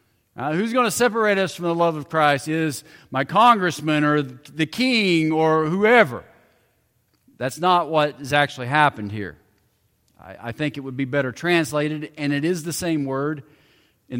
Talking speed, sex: 170 wpm, male